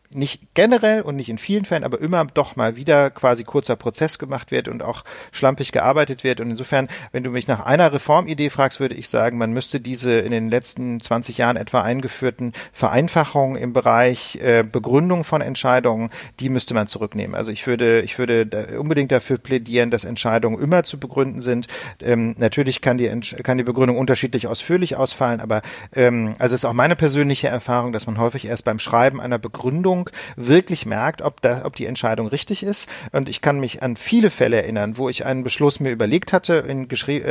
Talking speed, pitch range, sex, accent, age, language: 200 wpm, 120-145 Hz, male, German, 40-59, German